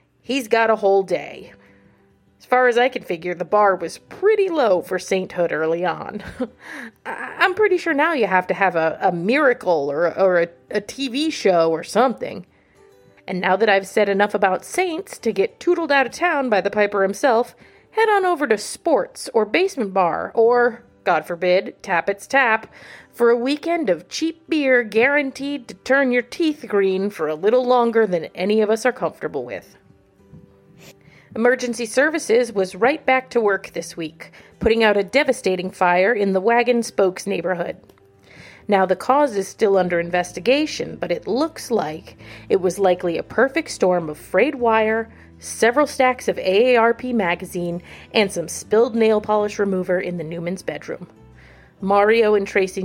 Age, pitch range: 30-49, 185-255 Hz